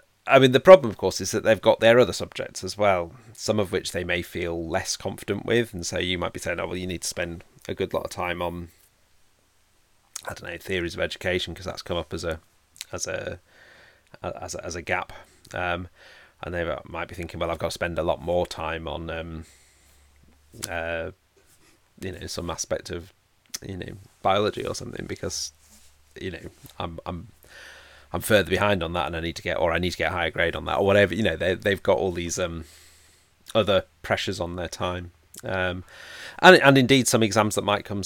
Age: 30-49